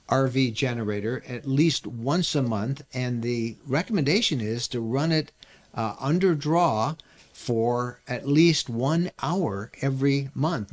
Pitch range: 115-145 Hz